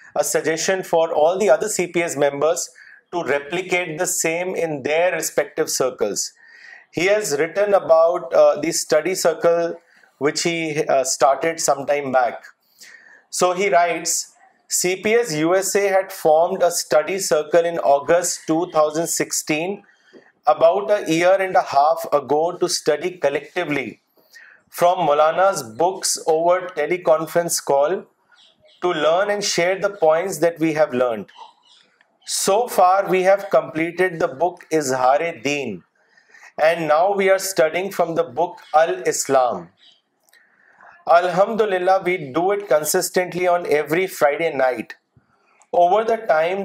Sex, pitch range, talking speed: male, 155-190 Hz, 130 wpm